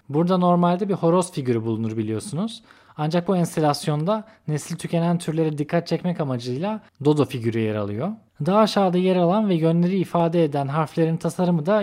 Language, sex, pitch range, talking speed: Turkish, male, 145-180 Hz, 155 wpm